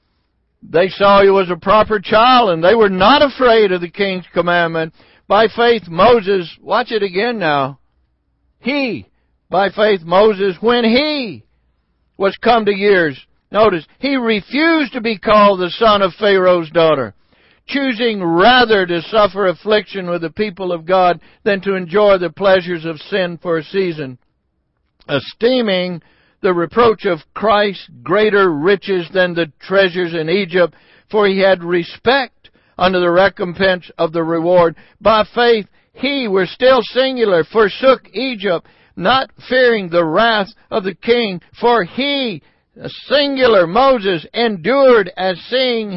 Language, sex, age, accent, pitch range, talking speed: English, male, 60-79, American, 175-230 Hz, 140 wpm